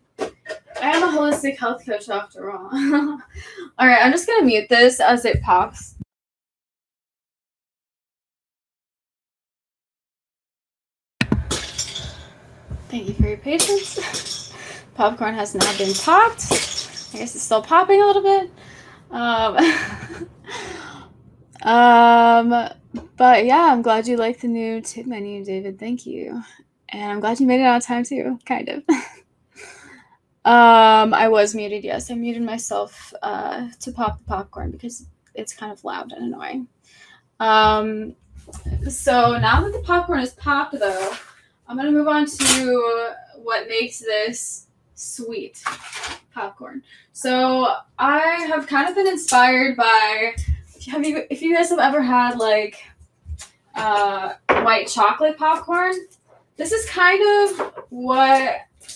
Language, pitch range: English, 220-300 Hz